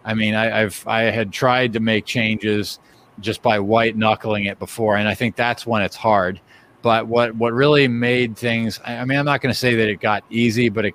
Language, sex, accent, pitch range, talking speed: English, male, American, 105-120 Hz, 230 wpm